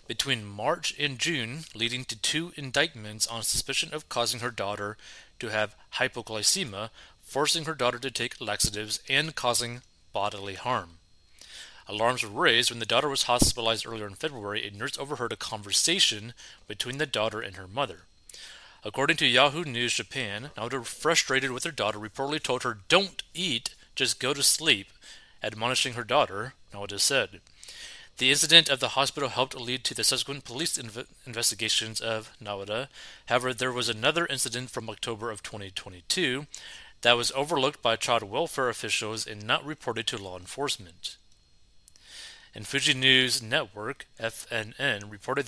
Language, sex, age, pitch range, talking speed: English, male, 30-49, 110-140 Hz, 155 wpm